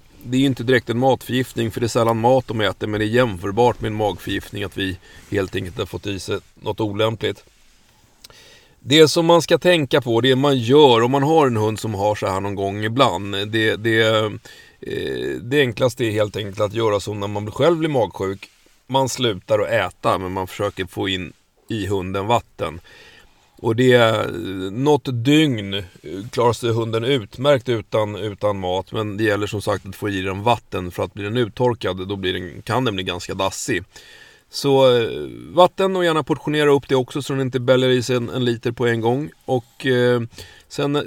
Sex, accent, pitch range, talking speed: male, native, 105-135 Hz, 200 wpm